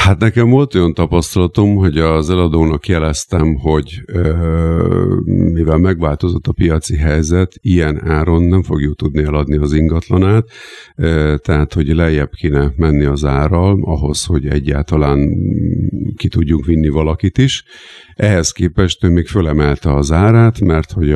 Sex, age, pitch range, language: male, 50-69, 80-95 Hz, Hungarian